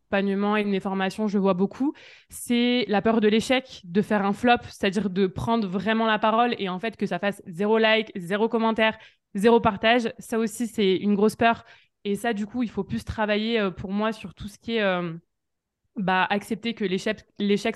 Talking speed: 210 wpm